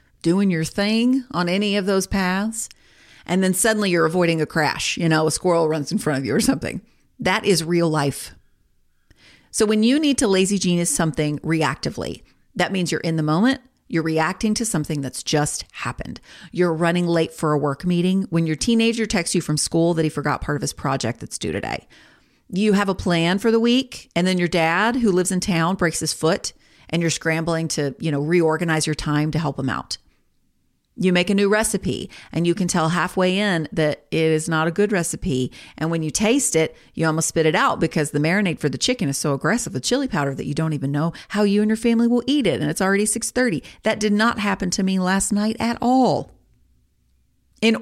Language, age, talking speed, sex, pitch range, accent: English, 40-59, 220 wpm, female, 155-205 Hz, American